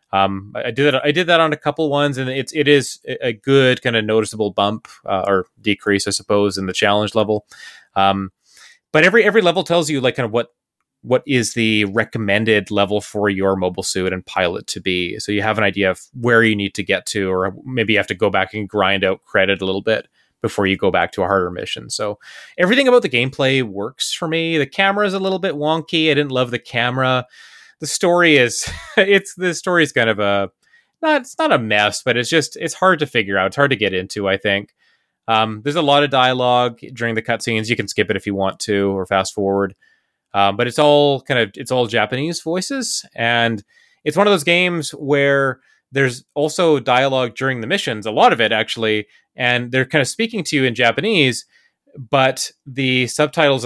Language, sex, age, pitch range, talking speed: English, male, 30-49, 105-150 Hz, 215 wpm